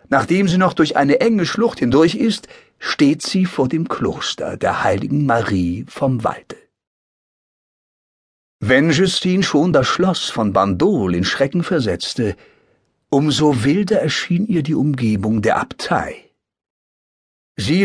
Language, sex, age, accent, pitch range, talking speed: German, male, 60-79, German, 125-180 Hz, 130 wpm